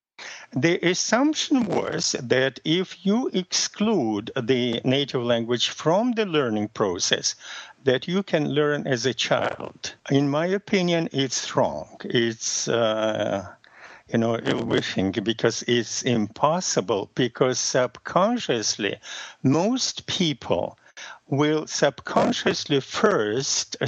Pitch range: 115-155 Hz